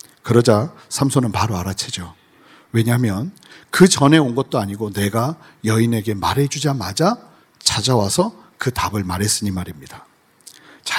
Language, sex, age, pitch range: Korean, male, 40-59, 115-160 Hz